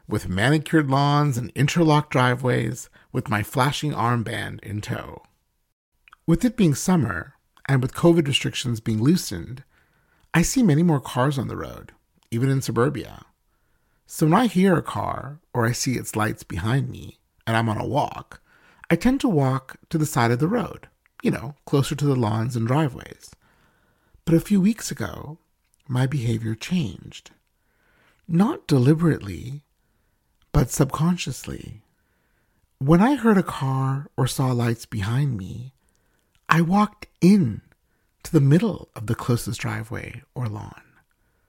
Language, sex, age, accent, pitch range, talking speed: English, male, 50-69, American, 115-155 Hz, 150 wpm